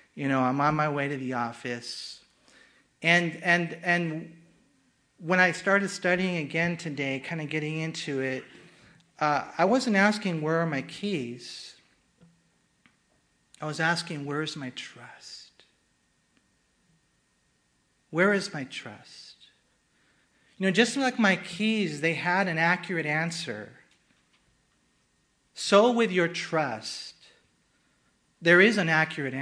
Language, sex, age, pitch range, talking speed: English, male, 40-59, 155-185 Hz, 125 wpm